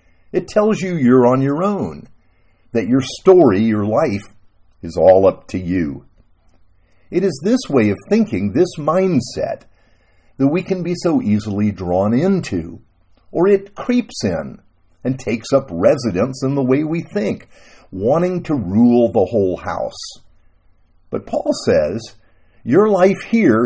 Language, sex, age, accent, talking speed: English, male, 50-69, American, 145 wpm